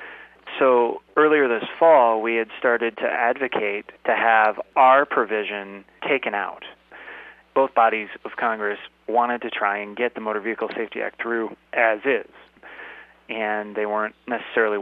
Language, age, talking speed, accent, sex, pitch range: English, 30-49, 145 wpm, American, male, 105-120 Hz